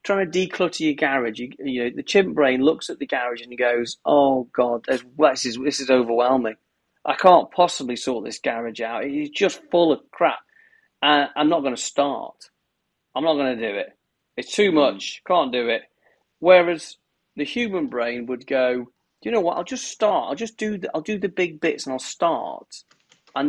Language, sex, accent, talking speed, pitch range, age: English, male, British, 205 wpm, 135-210 Hz, 40-59